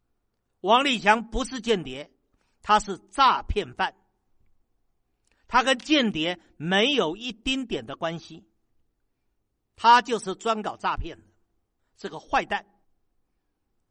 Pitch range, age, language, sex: 160-245 Hz, 50-69, Chinese, male